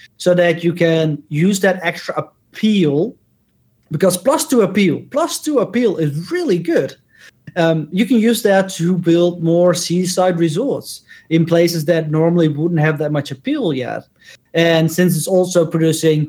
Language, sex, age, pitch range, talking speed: English, male, 30-49, 155-190 Hz, 160 wpm